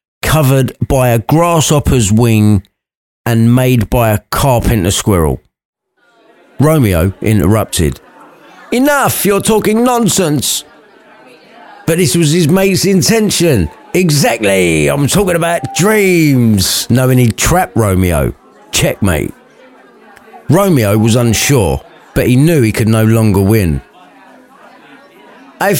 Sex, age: male, 40-59